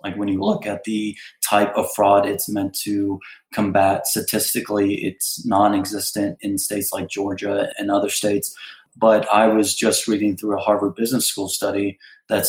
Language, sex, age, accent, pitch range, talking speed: English, male, 30-49, American, 100-110 Hz, 170 wpm